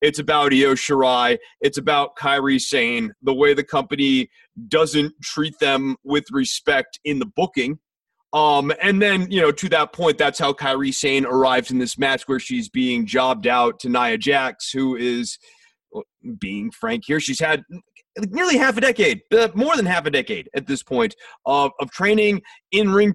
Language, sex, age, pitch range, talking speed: English, male, 30-49, 145-225 Hz, 175 wpm